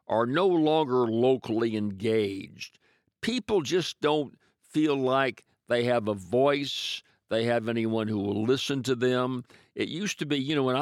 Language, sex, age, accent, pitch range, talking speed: English, male, 60-79, American, 110-135 Hz, 160 wpm